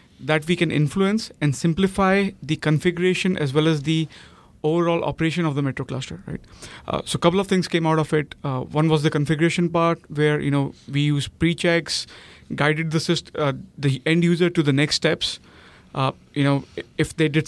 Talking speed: 200 wpm